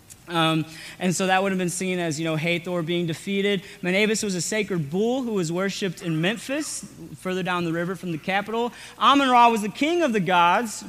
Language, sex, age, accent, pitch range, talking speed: English, male, 30-49, American, 175-225 Hz, 210 wpm